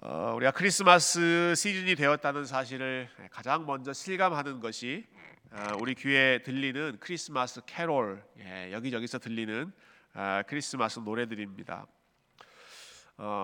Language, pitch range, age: Korean, 110-155 Hz, 40-59